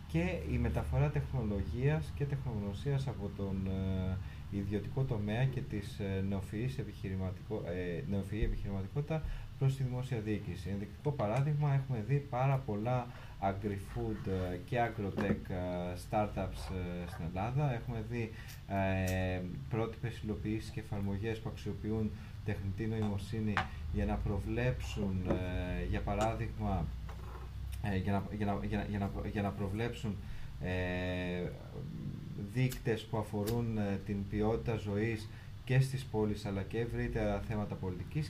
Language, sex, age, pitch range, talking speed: Greek, male, 20-39, 95-125 Hz, 110 wpm